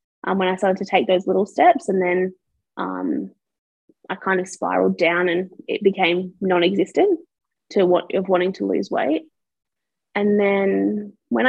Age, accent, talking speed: 20-39, Australian, 160 wpm